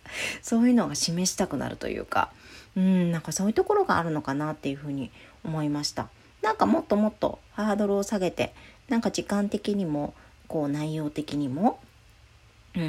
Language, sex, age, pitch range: Japanese, female, 40-59, 150-220 Hz